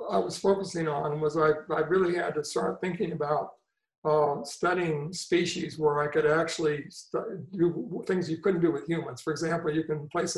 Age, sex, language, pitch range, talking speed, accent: 60-79, male, English, 155-180 Hz, 185 wpm, American